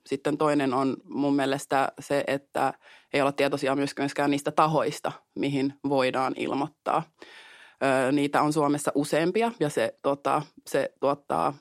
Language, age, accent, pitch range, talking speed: Finnish, 20-39, native, 140-155 Hz, 130 wpm